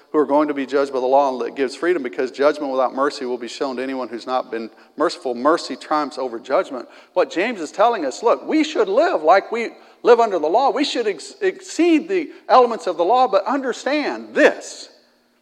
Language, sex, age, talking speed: English, male, 50-69, 215 wpm